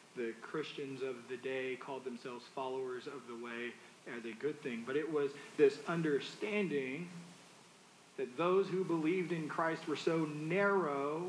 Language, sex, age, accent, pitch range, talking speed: English, male, 40-59, American, 150-225 Hz, 155 wpm